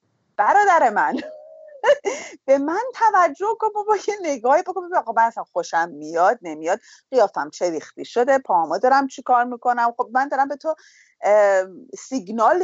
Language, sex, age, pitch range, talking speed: English, female, 30-49, 205-285 Hz, 125 wpm